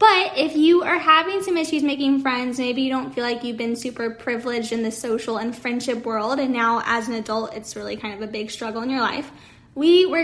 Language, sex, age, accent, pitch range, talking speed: English, female, 10-29, American, 235-300 Hz, 240 wpm